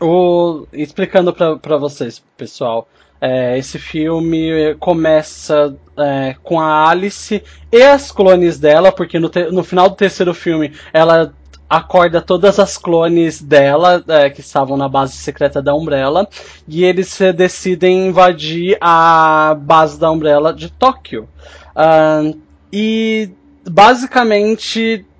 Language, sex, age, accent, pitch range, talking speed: Portuguese, male, 20-39, Brazilian, 155-205 Hz, 110 wpm